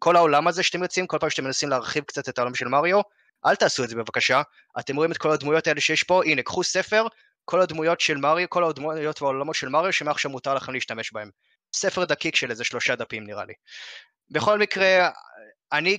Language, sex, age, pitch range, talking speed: Hebrew, male, 20-39, 130-170 Hz, 210 wpm